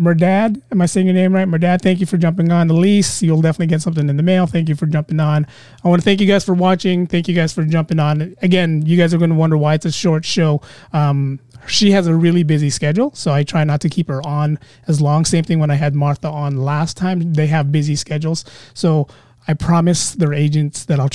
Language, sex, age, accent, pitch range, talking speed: English, male, 30-49, American, 145-180 Hz, 255 wpm